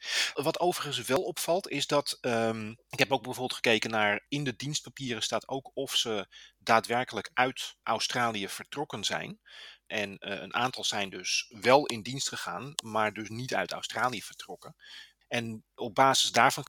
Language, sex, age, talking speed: Dutch, male, 30-49, 160 wpm